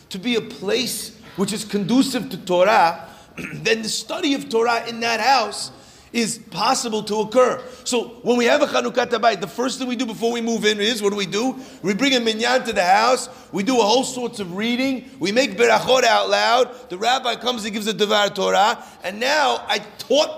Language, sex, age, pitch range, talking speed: English, male, 40-59, 210-255 Hz, 215 wpm